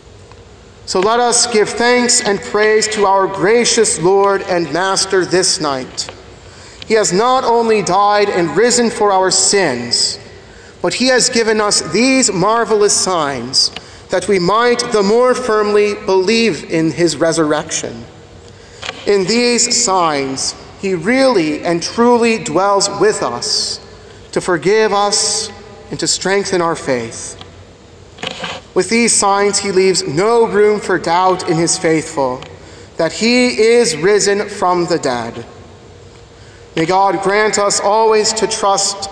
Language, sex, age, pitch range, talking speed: English, male, 40-59, 145-210 Hz, 135 wpm